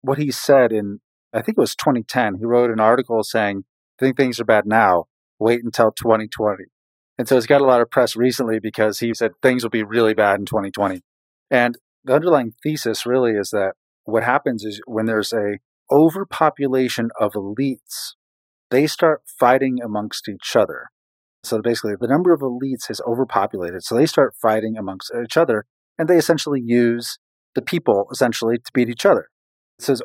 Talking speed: 180 wpm